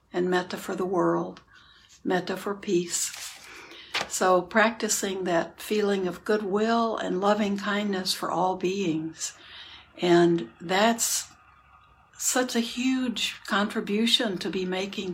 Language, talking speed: English, 115 wpm